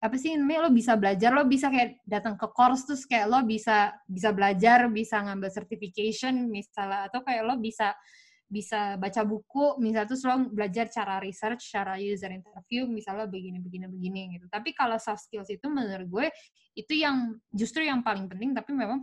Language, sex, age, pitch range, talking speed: Indonesian, female, 20-39, 195-245 Hz, 180 wpm